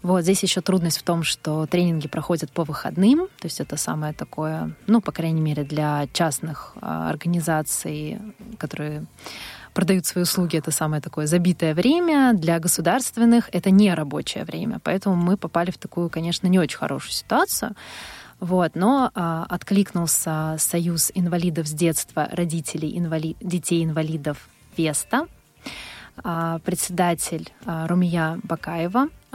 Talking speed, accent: 135 wpm, native